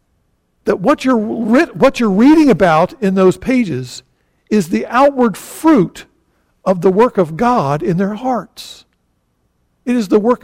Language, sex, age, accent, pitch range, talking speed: English, male, 50-69, American, 155-225 Hz, 150 wpm